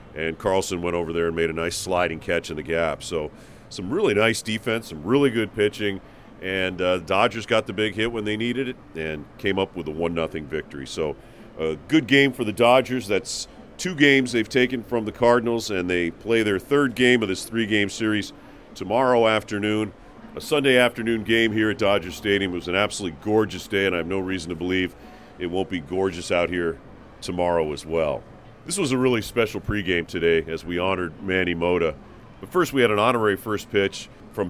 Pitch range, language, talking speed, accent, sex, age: 90-110 Hz, English, 210 wpm, American, male, 40-59